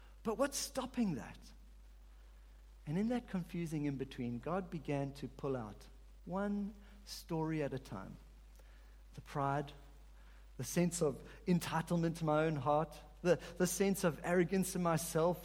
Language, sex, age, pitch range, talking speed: English, male, 50-69, 145-200 Hz, 145 wpm